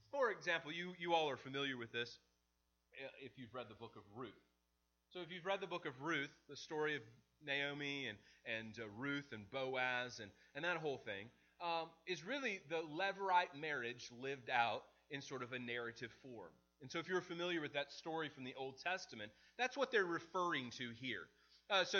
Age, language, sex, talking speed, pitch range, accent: 30-49, English, male, 200 wpm, 135-175 Hz, American